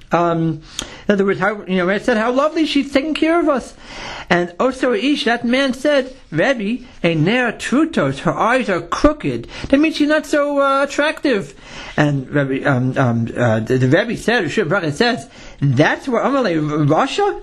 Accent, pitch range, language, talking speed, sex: American, 170-250 Hz, English, 180 wpm, male